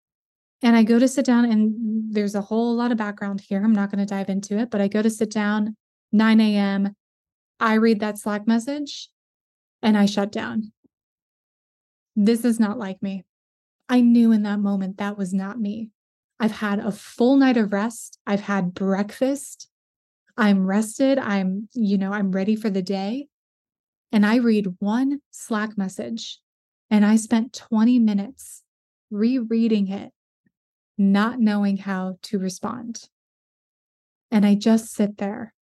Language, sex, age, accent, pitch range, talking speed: English, female, 20-39, American, 200-225 Hz, 160 wpm